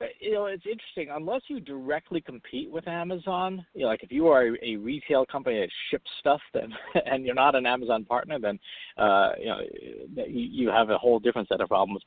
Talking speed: 210 wpm